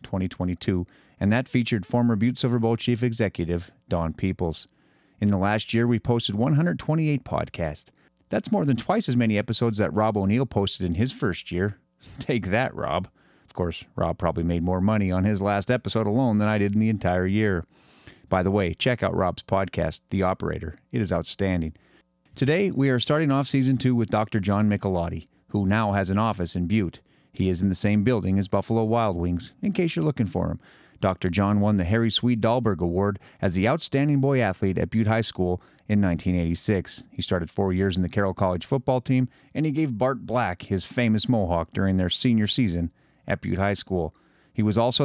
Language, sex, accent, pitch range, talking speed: English, male, American, 95-120 Hz, 200 wpm